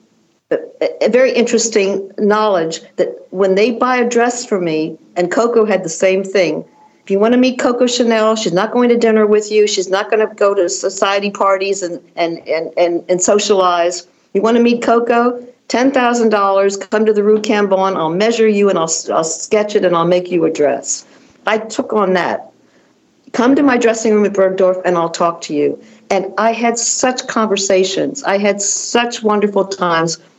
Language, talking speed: English, 185 wpm